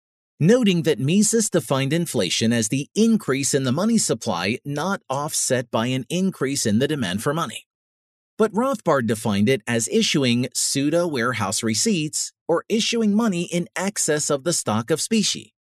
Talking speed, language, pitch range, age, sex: 155 wpm, English, 115-180 Hz, 40-59, male